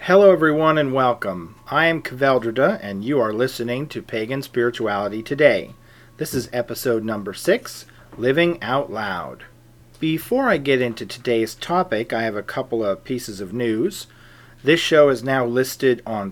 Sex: male